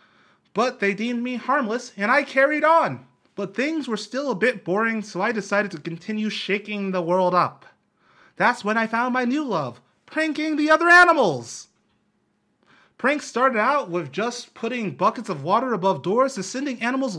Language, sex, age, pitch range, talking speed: English, male, 30-49, 165-235 Hz, 175 wpm